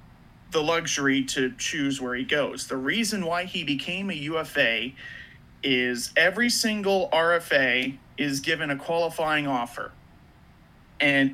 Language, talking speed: English, 125 wpm